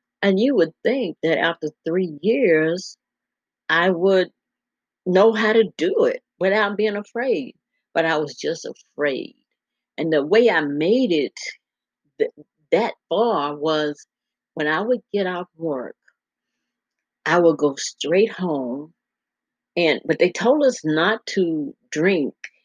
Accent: American